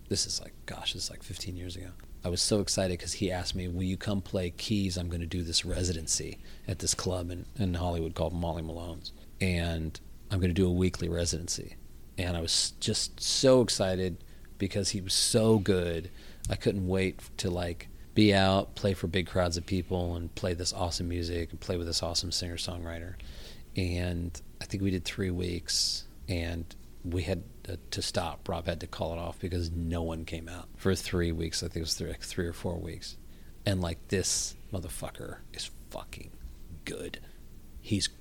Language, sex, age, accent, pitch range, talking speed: English, male, 40-59, American, 85-100 Hz, 195 wpm